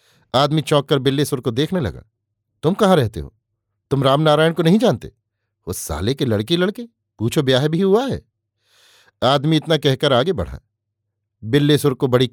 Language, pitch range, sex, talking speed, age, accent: Hindi, 110-145 Hz, male, 165 wpm, 50-69, native